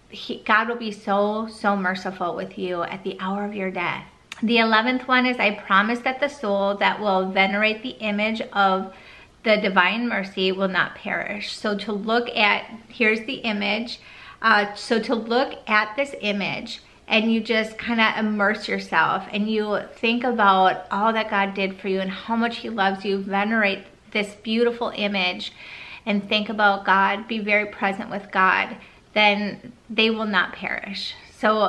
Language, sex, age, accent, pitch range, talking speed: English, female, 30-49, American, 195-225 Hz, 170 wpm